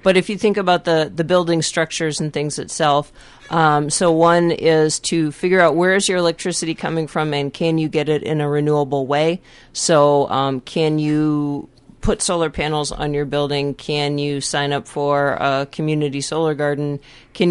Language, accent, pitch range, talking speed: English, American, 145-165 Hz, 185 wpm